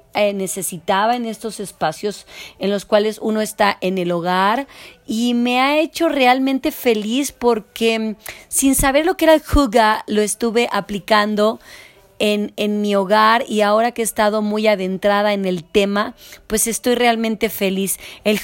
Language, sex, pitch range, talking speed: Spanish, female, 195-235 Hz, 155 wpm